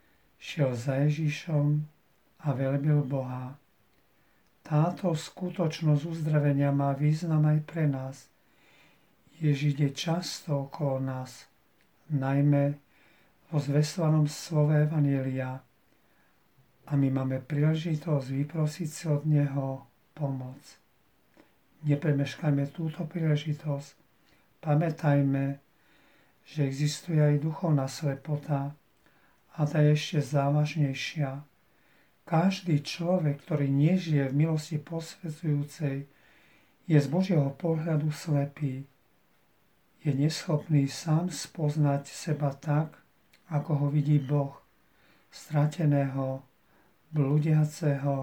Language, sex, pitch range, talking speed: Slovak, male, 140-155 Hz, 90 wpm